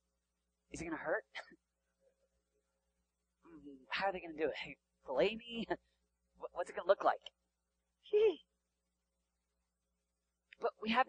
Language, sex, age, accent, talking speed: English, male, 30-49, American, 125 wpm